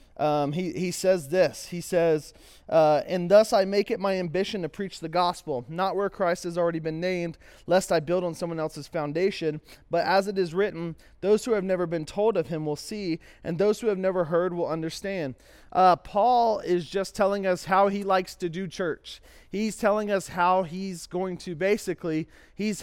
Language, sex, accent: English, male, American